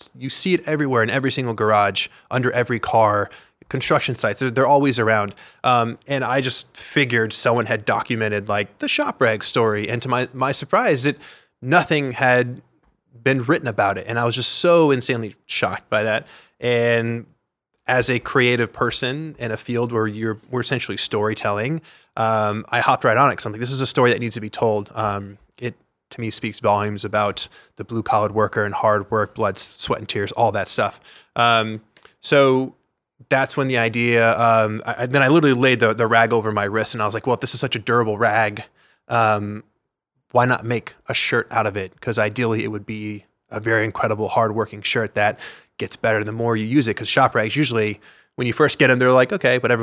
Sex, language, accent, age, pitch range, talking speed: male, English, American, 20-39, 105-130 Hz, 205 wpm